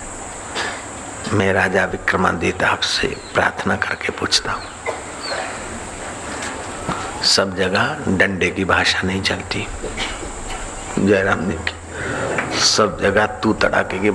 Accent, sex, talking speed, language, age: native, male, 100 wpm, Hindi, 60-79